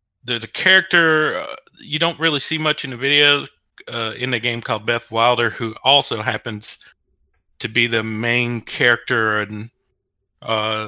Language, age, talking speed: English, 40-59, 160 wpm